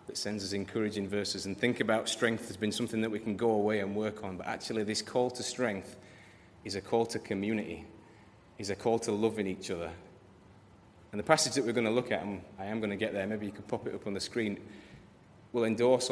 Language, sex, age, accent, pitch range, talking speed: English, male, 30-49, British, 100-120 Hz, 240 wpm